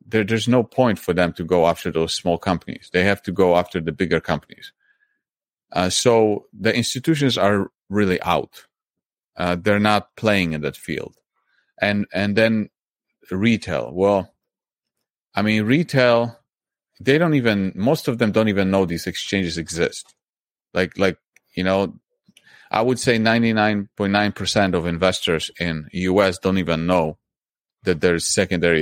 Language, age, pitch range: English, 30-49, 85-105 Hz